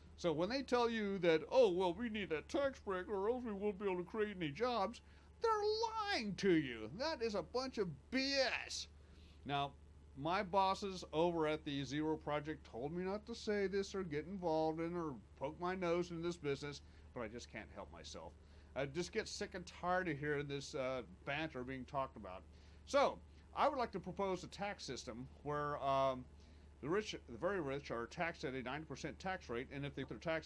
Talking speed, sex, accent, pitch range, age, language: 205 wpm, male, American, 125-195 Hz, 40-59, English